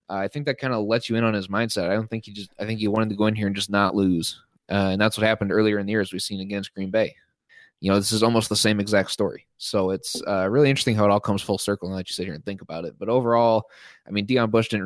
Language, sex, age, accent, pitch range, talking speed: English, male, 20-39, American, 95-110 Hz, 320 wpm